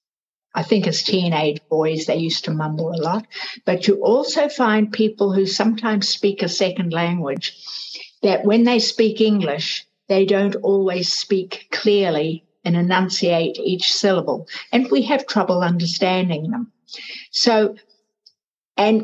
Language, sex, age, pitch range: English, female, 60-79, 180-230 Hz